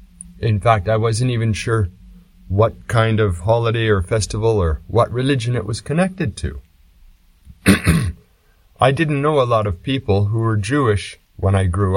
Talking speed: 160 wpm